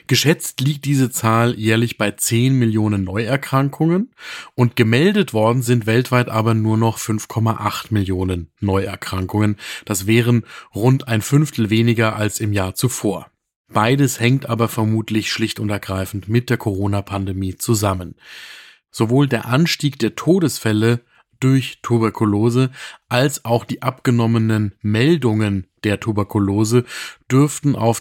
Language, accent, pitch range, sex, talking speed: German, German, 105-125 Hz, male, 120 wpm